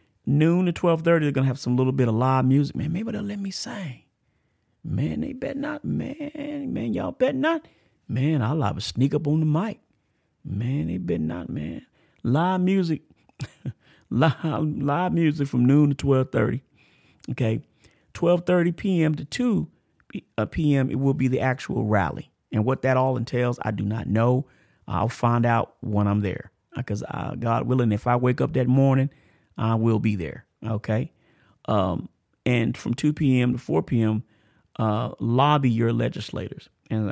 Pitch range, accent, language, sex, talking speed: 110-140 Hz, American, English, male, 170 wpm